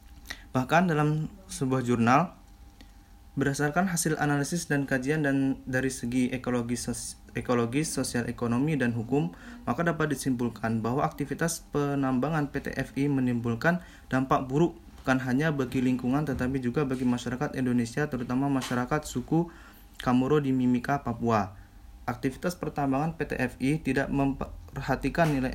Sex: male